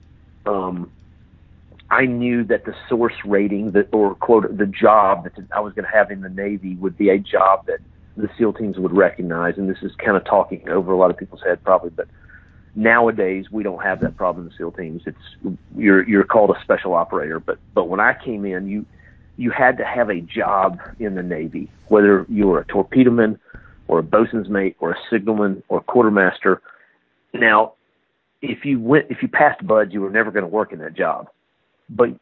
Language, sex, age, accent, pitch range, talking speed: English, male, 40-59, American, 95-110 Hz, 205 wpm